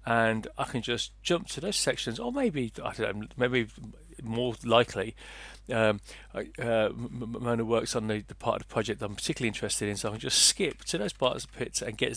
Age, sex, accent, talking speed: 40-59, male, British, 240 wpm